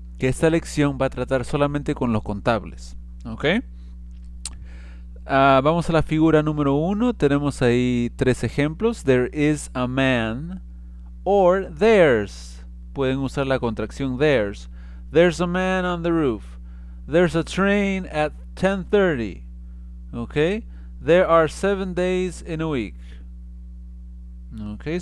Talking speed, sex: 125 wpm, male